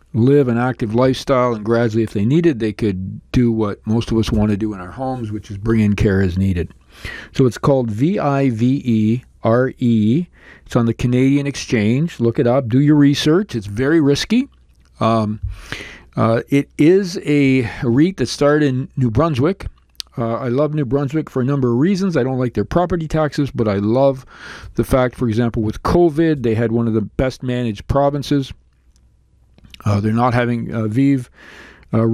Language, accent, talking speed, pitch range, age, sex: English, American, 185 wpm, 110-135 Hz, 50-69, male